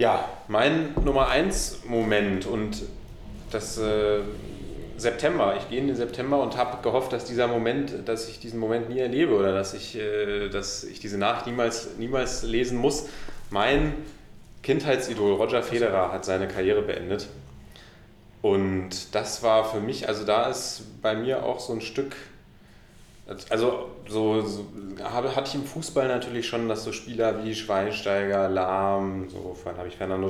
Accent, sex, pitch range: German, male, 100-115 Hz